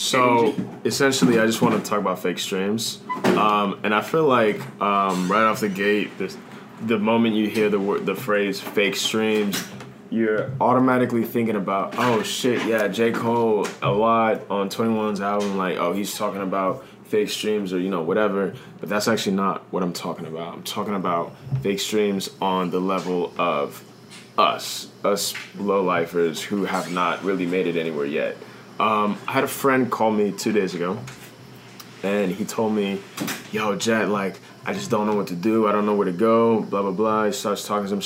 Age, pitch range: 20-39, 100-115 Hz